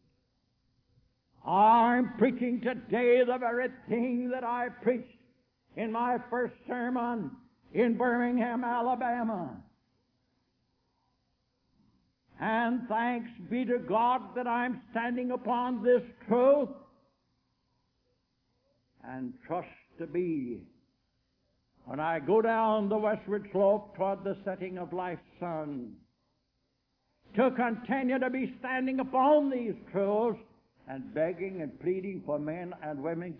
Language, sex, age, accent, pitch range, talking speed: English, male, 60-79, American, 175-245 Hz, 110 wpm